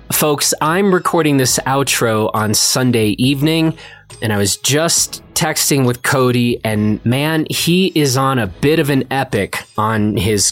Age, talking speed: 20-39, 155 wpm